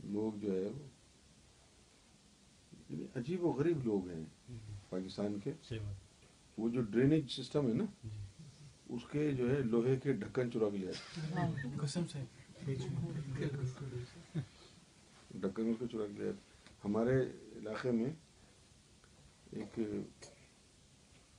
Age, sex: 50-69, male